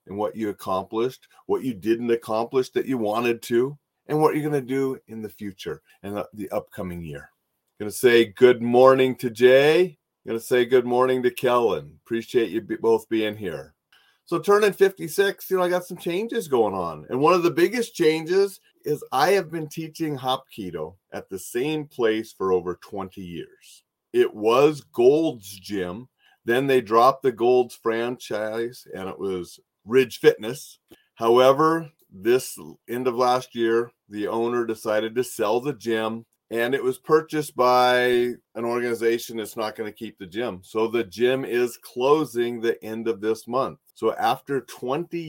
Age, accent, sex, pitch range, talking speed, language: 40-59, American, male, 110-150 Hz, 170 wpm, English